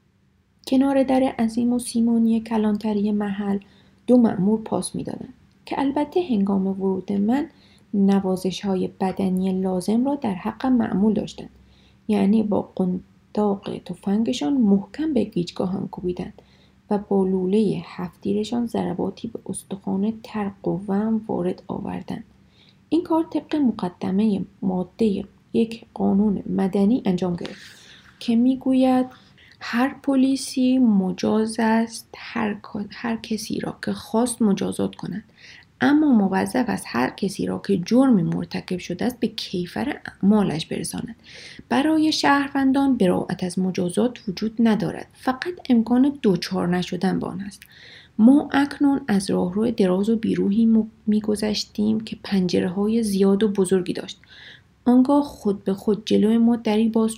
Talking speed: 125 wpm